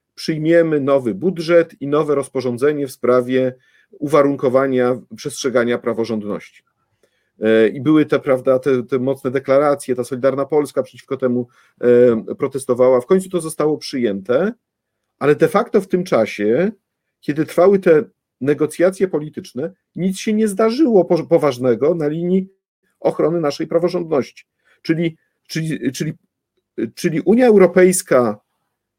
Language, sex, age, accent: Polish, male, 50-69, native